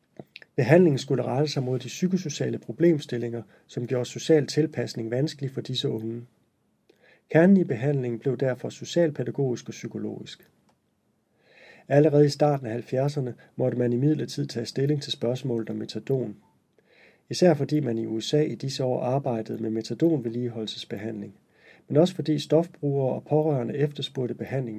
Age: 40-59